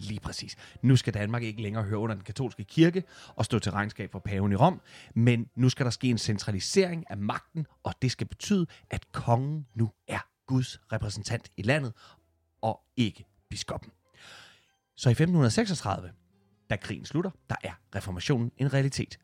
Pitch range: 105-130 Hz